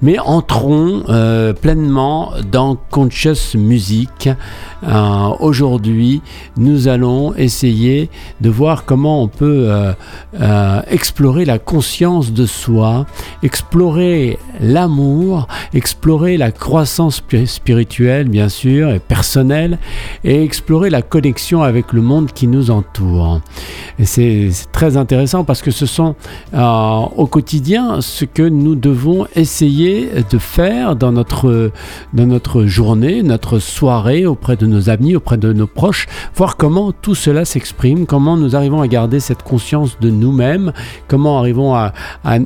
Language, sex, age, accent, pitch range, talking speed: French, male, 50-69, French, 115-155 Hz, 135 wpm